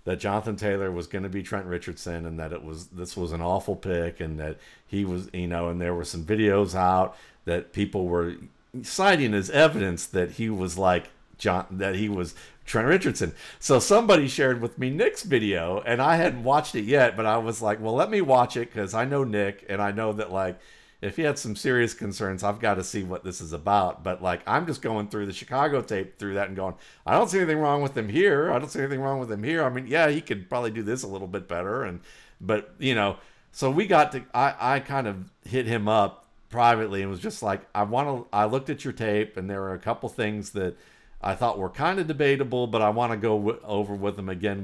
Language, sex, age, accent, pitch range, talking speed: English, male, 50-69, American, 90-115 Hz, 245 wpm